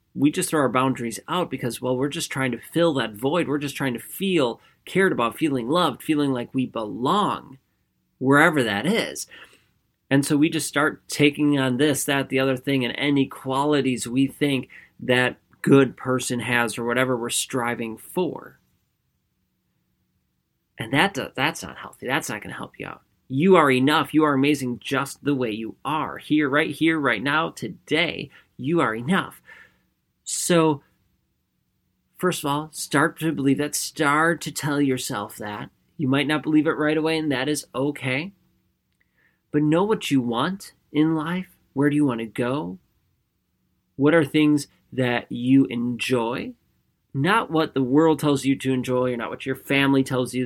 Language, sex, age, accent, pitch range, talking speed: English, male, 30-49, American, 120-150 Hz, 175 wpm